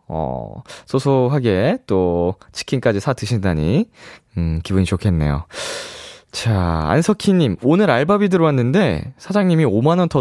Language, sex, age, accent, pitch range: Korean, male, 20-39, native, 100-160 Hz